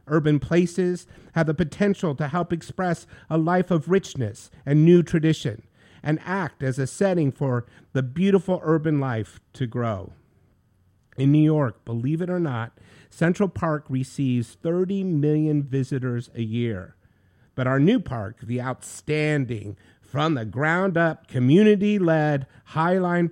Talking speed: 130 wpm